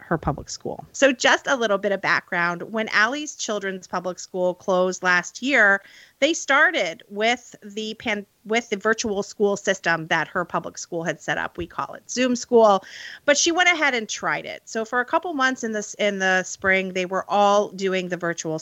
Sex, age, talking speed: female, 40-59, 205 wpm